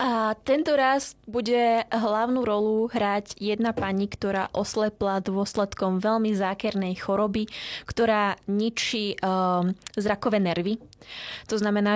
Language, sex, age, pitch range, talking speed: Czech, female, 20-39, 190-230 Hz, 110 wpm